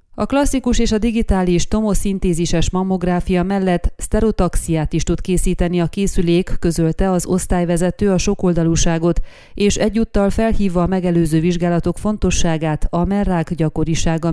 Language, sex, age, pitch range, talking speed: Hungarian, female, 30-49, 165-195 Hz, 120 wpm